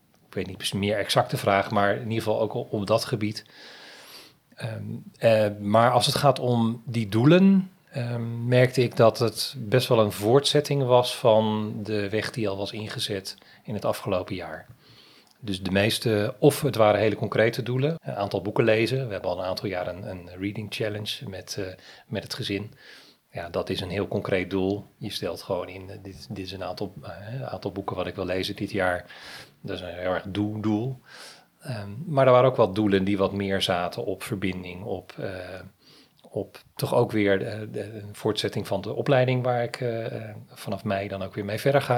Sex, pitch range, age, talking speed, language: male, 100-125 Hz, 40-59, 205 wpm, Dutch